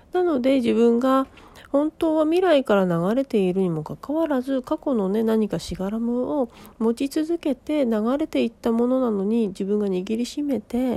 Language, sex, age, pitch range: Japanese, female, 40-59, 205-275 Hz